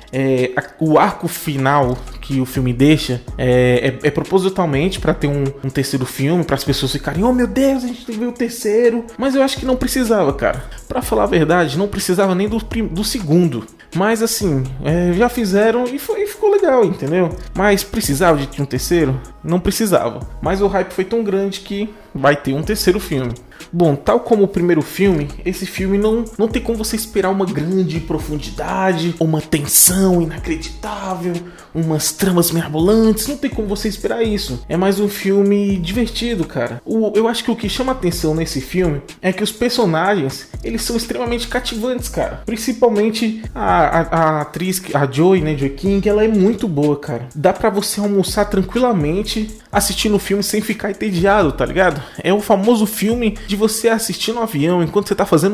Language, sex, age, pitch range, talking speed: Portuguese, male, 20-39, 155-220 Hz, 185 wpm